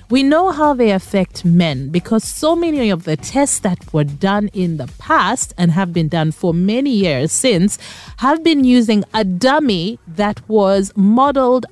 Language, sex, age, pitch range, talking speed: English, female, 30-49, 185-275 Hz, 175 wpm